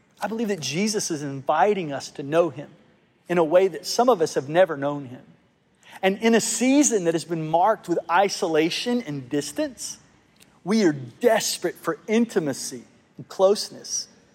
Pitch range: 155-220 Hz